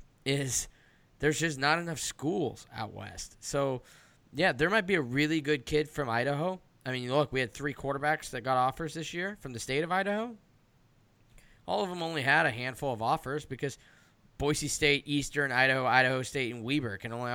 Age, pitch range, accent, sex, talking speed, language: 10-29, 120-150 Hz, American, male, 195 wpm, English